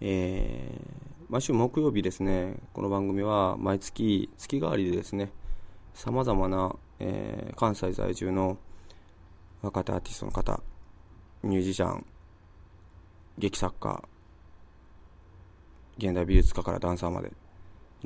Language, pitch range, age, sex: Japanese, 85-100 Hz, 20-39, male